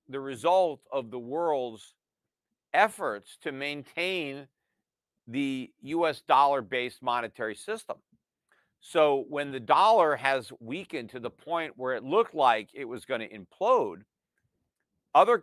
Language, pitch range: English, 130-170 Hz